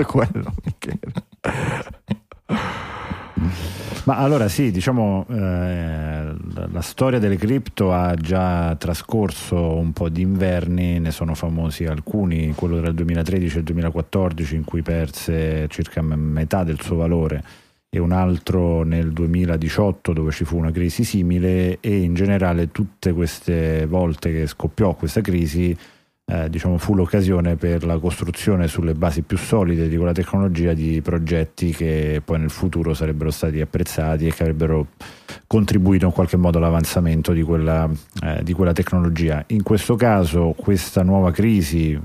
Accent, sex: native, male